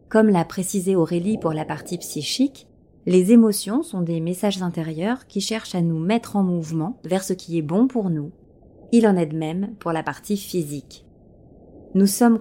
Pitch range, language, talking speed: 170-225 Hz, French, 190 wpm